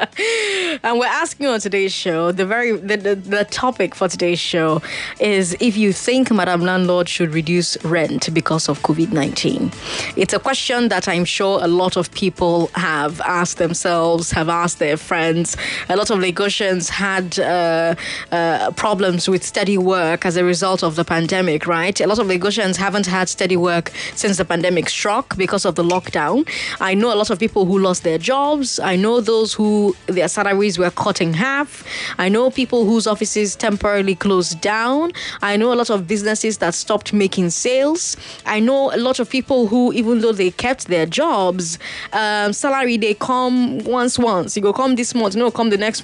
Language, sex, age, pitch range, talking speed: English, female, 20-39, 180-235 Hz, 190 wpm